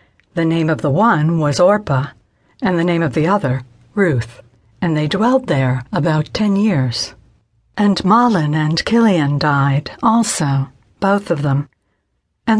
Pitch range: 145-210 Hz